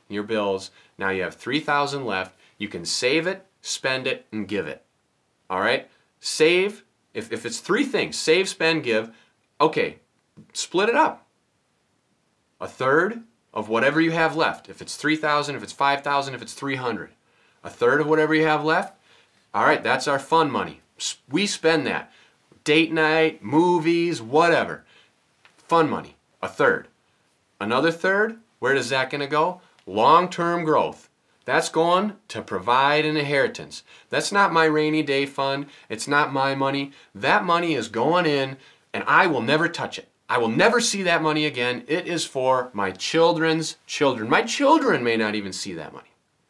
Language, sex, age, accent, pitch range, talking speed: English, male, 30-49, American, 130-165 Hz, 170 wpm